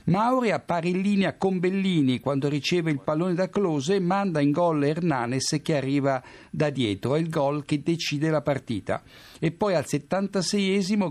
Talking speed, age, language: 175 wpm, 60-79, Italian